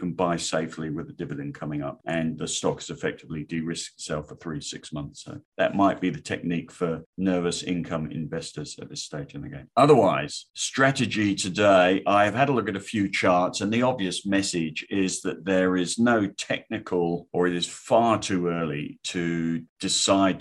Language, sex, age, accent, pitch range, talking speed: English, male, 50-69, British, 80-95 Hz, 190 wpm